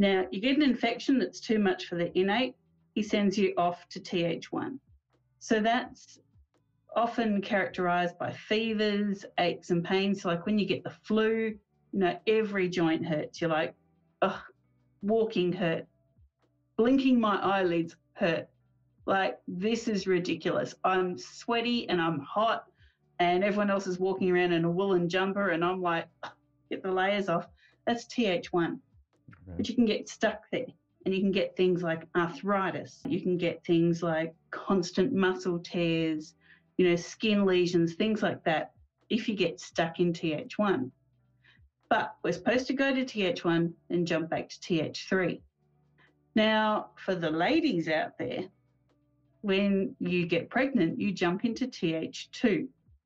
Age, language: 40-59, English